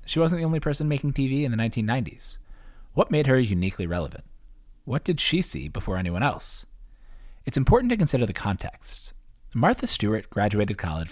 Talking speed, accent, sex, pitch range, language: 175 wpm, American, male, 90-125 Hz, English